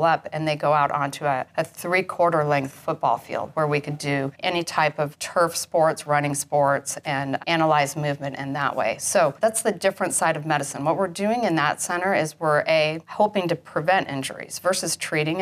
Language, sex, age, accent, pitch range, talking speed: English, female, 40-59, American, 150-180 Hz, 200 wpm